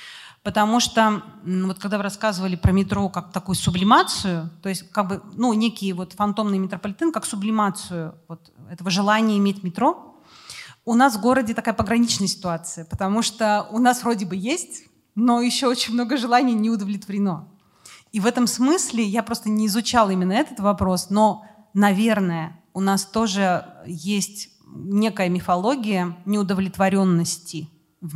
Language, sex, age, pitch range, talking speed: Russian, female, 30-49, 180-220 Hz, 145 wpm